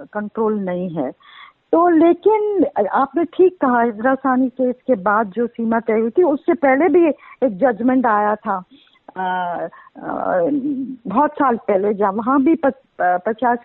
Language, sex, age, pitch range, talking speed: Hindi, female, 50-69, 220-285 Hz, 140 wpm